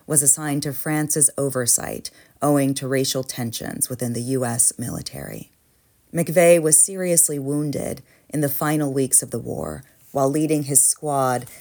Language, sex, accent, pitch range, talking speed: English, female, American, 125-155 Hz, 145 wpm